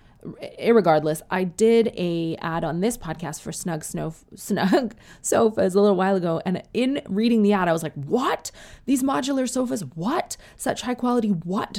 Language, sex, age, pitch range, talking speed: English, female, 20-39, 160-205 Hz, 175 wpm